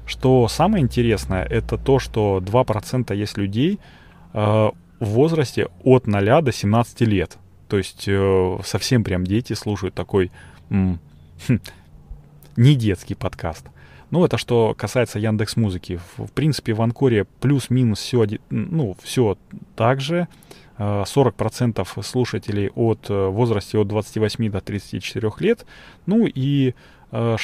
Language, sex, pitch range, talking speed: Russian, male, 105-130 Hz, 130 wpm